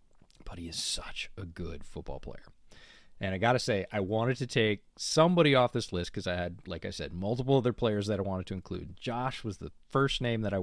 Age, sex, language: 30-49, male, English